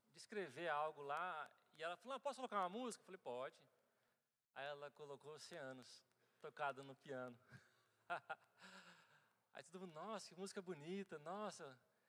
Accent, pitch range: Brazilian, 175-225 Hz